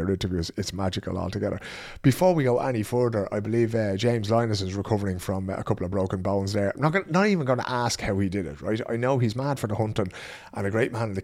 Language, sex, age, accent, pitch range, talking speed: English, male, 30-49, British, 100-125 Hz, 255 wpm